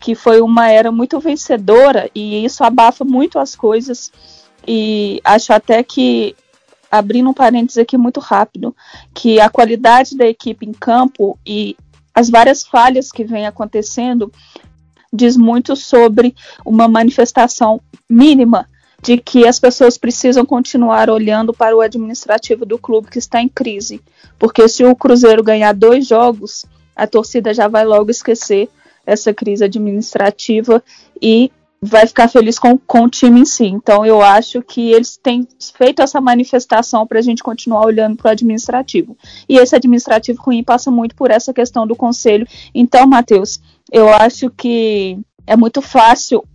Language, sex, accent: Portuguese, female, Brazilian